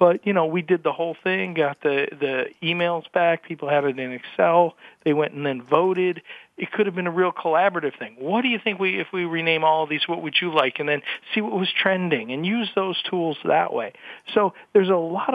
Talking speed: 240 wpm